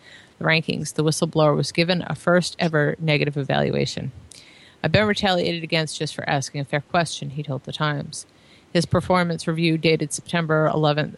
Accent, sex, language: American, female, English